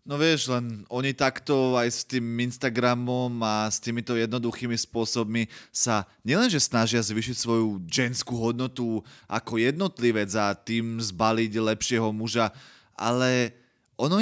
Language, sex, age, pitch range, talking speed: Slovak, male, 20-39, 115-145 Hz, 125 wpm